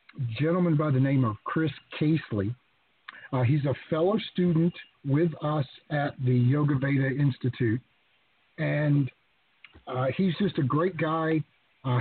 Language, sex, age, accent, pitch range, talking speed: English, male, 50-69, American, 135-170 Hz, 135 wpm